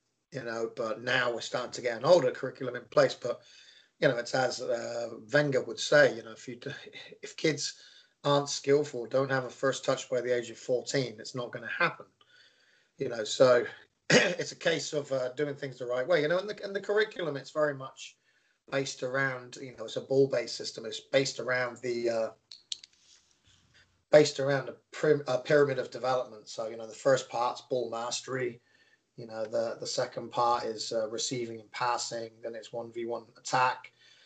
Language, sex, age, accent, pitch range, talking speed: English, male, 30-49, British, 120-145 Hz, 195 wpm